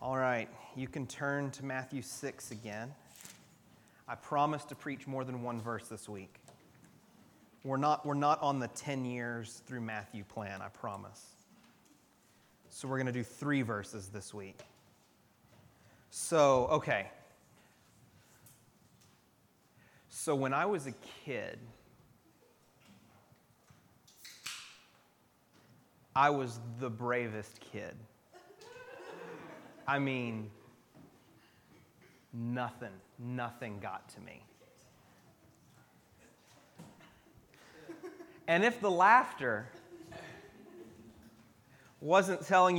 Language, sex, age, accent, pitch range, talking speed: English, male, 30-49, American, 120-160 Hz, 95 wpm